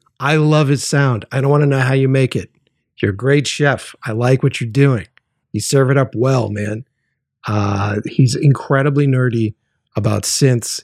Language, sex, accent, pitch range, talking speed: English, male, American, 115-150 Hz, 190 wpm